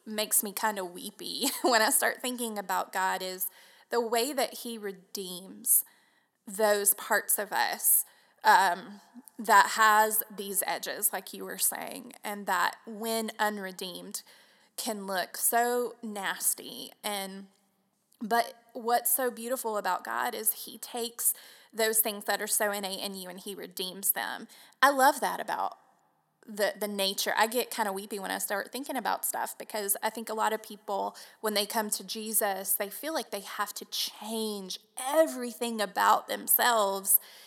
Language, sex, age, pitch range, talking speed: English, female, 20-39, 200-230 Hz, 160 wpm